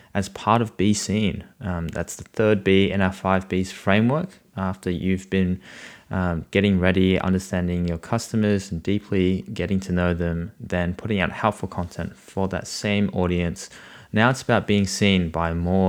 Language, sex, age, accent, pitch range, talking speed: English, male, 20-39, Australian, 90-105 Hz, 175 wpm